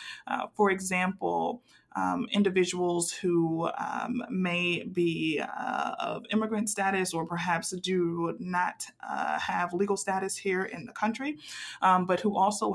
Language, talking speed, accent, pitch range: English, 135 wpm, American, 170-205 Hz